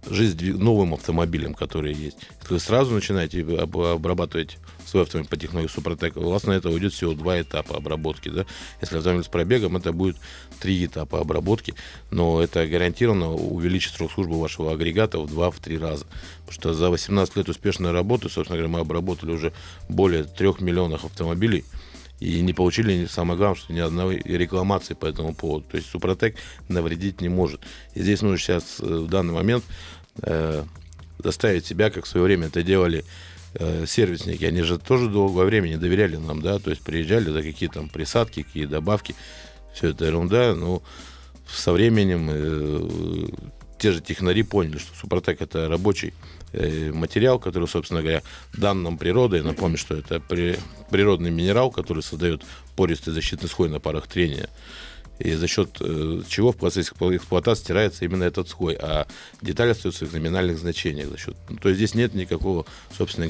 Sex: male